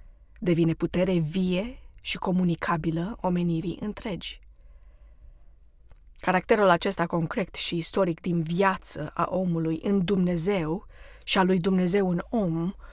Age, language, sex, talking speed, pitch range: 20-39, Romanian, female, 110 wpm, 165-225 Hz